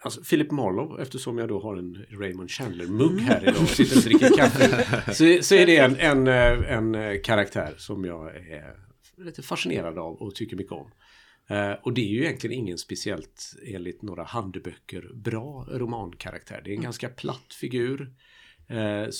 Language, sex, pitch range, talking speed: Swedish, male, 95-125 Hz, 170 wpm